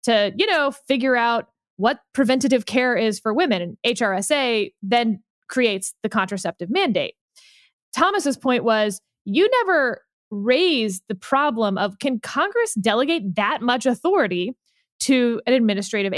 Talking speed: 135 wpm